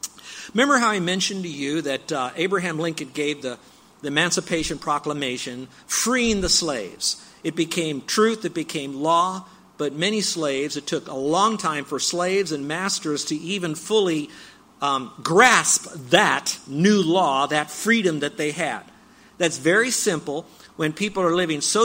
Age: 50-69